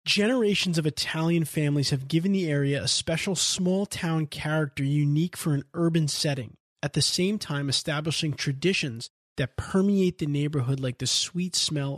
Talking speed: 155 wpm